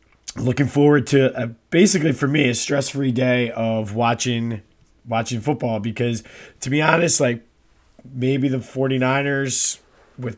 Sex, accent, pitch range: male, American, 120-140 Hz